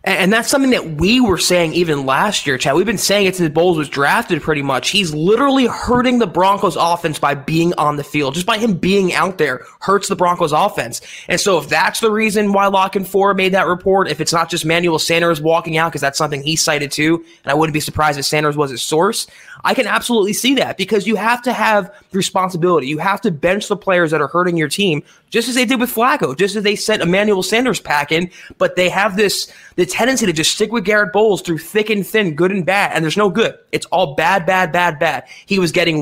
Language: English